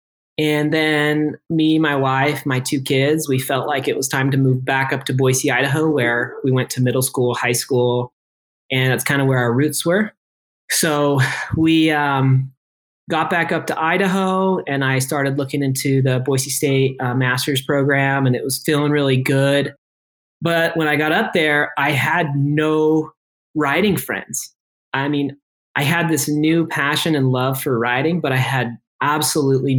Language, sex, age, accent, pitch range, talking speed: English, male, 30-49, American, 130-155 Hz, 175 wpm